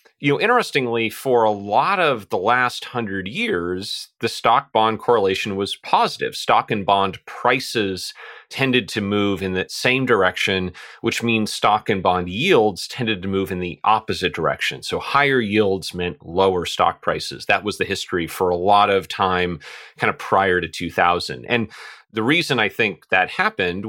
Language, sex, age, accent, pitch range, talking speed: English, male, 30-49, American, 95-120 Hz, 175 wpm